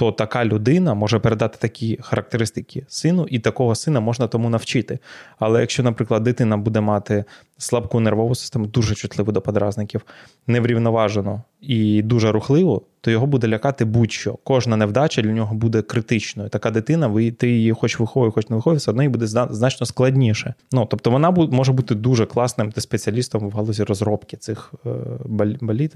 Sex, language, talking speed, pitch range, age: male, Ukrainian, 170 wpm, 110-125 Hz, 20-39